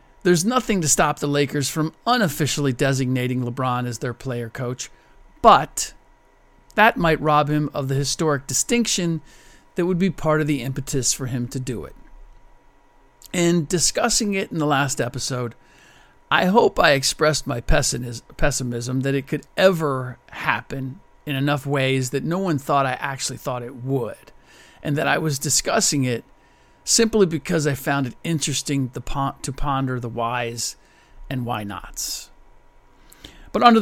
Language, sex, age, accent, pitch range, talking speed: English, male, 50-69, American, 130-160 Hz, 150 wpm